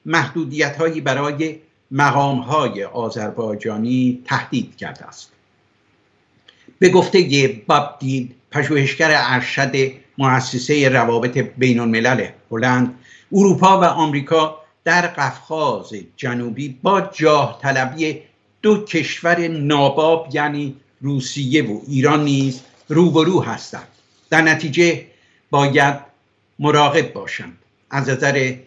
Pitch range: 130-160 Hz